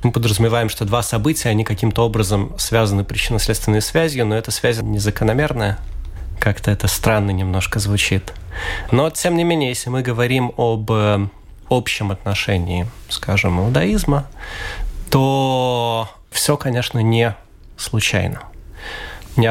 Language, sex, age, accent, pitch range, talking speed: Russian, male, 30-49, native, 105-130 Hz, 115 wpm